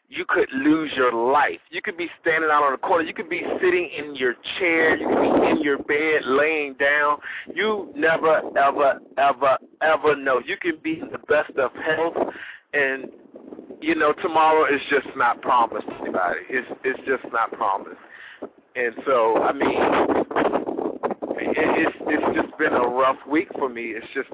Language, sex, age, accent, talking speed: English, male, 40-59, American, 175 wpm